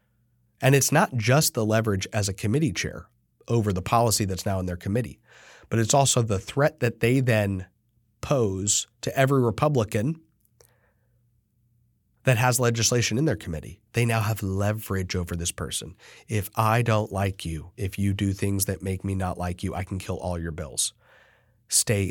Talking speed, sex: 175 wpm, male